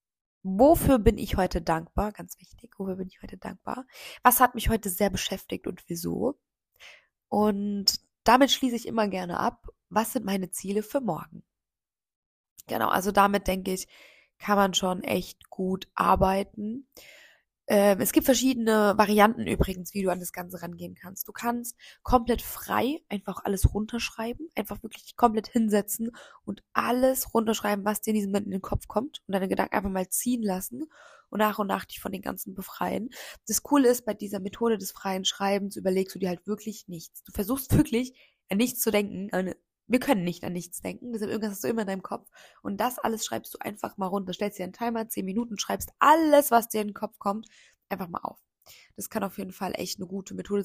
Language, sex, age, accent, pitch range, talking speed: German, female, 20-39, German, 190-230 Hz, 200 wpm